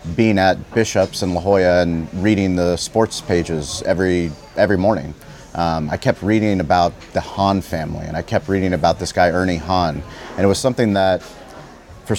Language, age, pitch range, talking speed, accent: English, 30-49, 85-100 Hz, 180 wpm, American